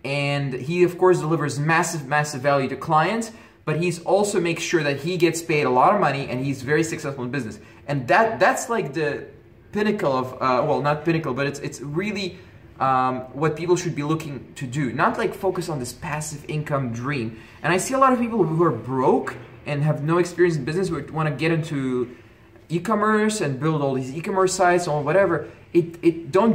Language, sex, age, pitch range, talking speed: English, male, 20-39, 140-180 Hz, 205 wpm